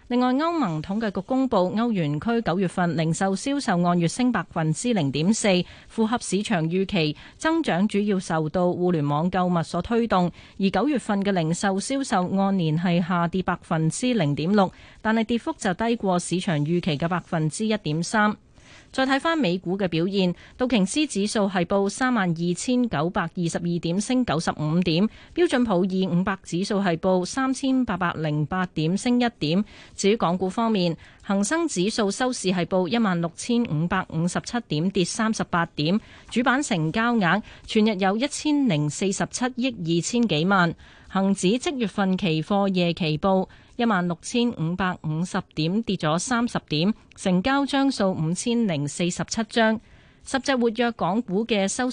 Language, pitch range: Chinese, 175-230 Hz